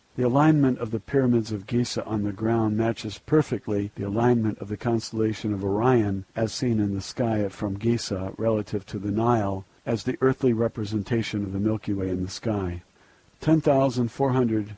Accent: American